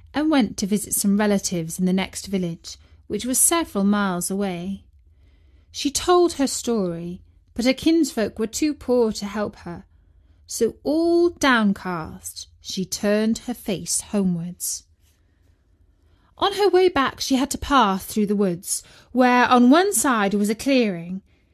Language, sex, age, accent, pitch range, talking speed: English, female, 30-49, British, 180-265 Hz, 150 wpm